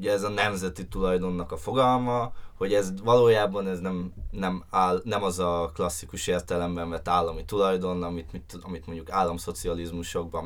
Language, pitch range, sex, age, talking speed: Hungarian, 90-115 Hz, male, 20-39, 155 wpm